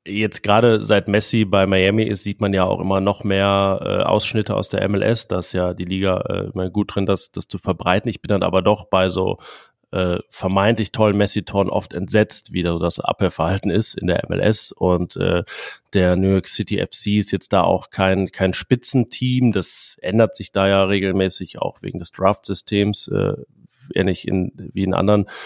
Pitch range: 90-100 Hz